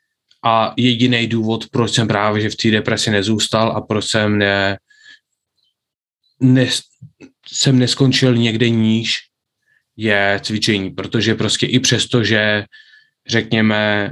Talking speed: 120 wpm